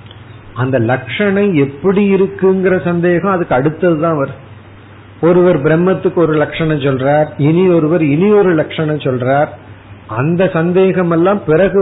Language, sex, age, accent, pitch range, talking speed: Tamil, male, 50-69, native, 125-185 Hz, 120 wpm